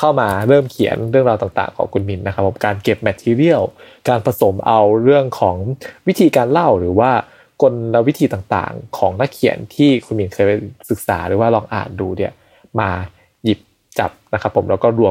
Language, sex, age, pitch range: Thai, male, 20-39, 100-125 Hz